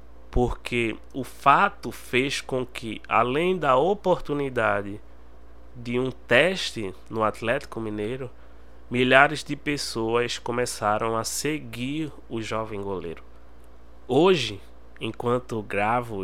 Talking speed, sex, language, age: 100 wpm, male, Portuguese, 20-39